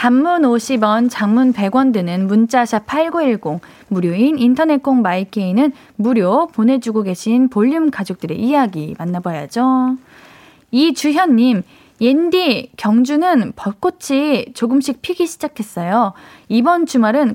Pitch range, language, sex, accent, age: 210-295 Hz, Korean, female, native, 20-39